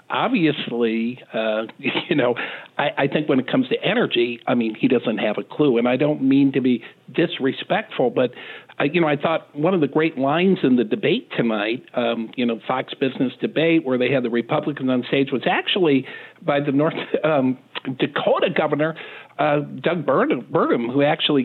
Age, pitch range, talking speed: 50-69, 125-170 Hz, 185 wpm